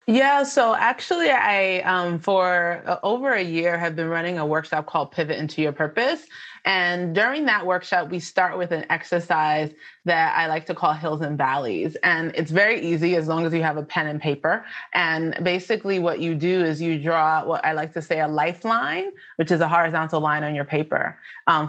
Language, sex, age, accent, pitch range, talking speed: English, female, 20-39, American, 155-190 Hz, 200 wpm